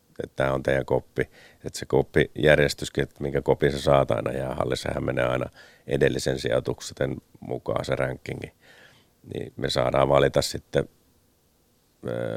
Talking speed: 145 wpm